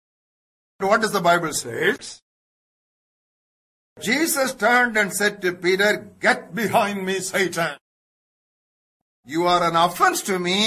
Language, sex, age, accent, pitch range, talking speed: English, male, 60-79, Indian, 175-220 Hz, 120 wpm